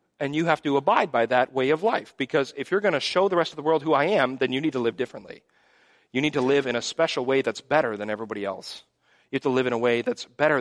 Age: 40-59